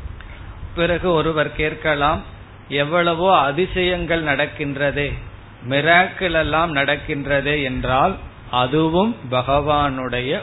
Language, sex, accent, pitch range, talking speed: Tamil, male, native, 120-155 Hz, 70 wpm